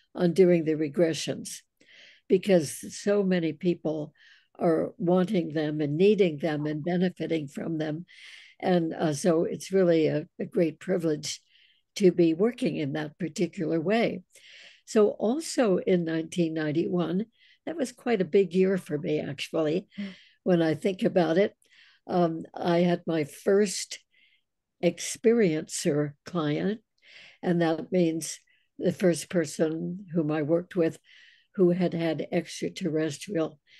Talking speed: 130 wpm